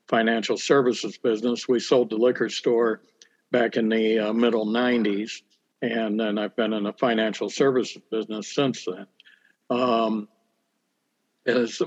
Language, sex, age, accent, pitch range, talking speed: English, male, 60-79, American, 120-140 Hz, 135 wpm